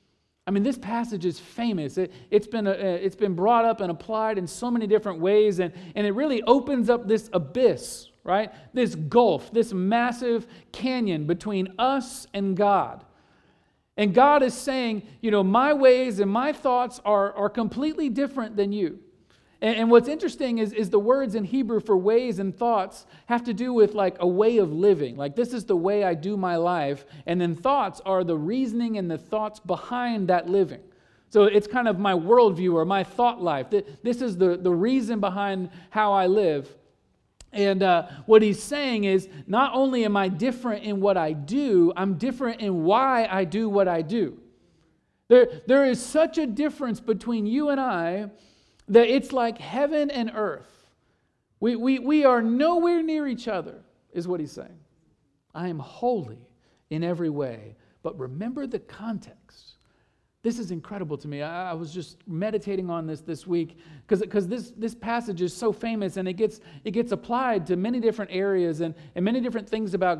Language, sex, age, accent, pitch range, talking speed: English, male, 40-59, American, 185-240 Hz, 185 wpm